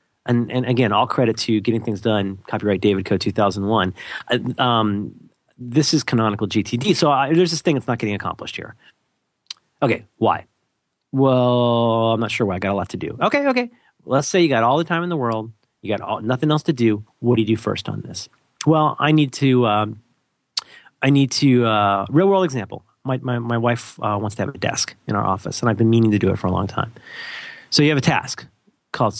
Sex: male